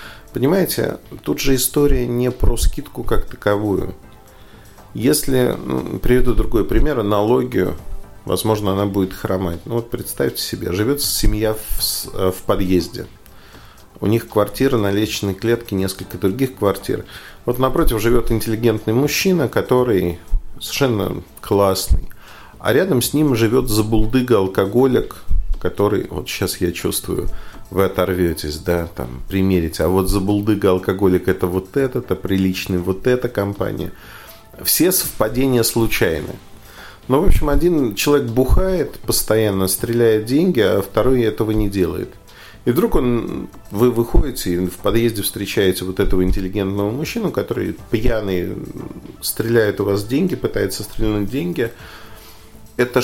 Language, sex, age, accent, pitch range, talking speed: Russian, male, 40-59, native, 95-120 Hz, 130 wpm